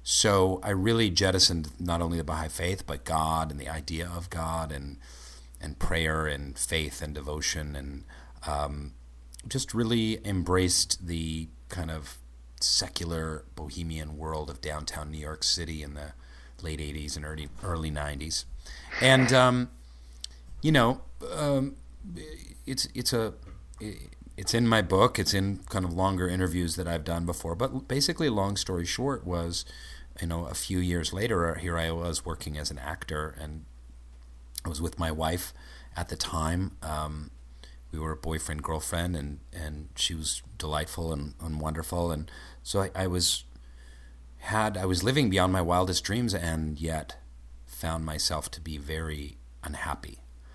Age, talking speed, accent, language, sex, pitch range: 40-59, 155 wpm, American, English, male, 75-95 Hz